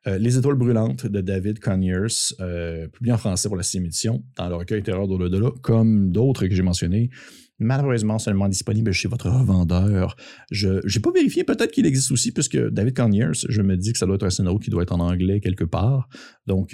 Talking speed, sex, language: 215 wpm, male, French